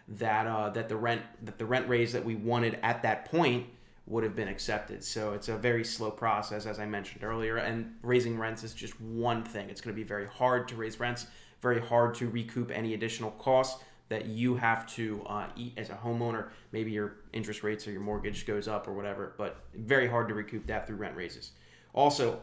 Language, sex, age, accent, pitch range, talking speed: English, male, 20-39, American, 110-125 Hz, 220 wpm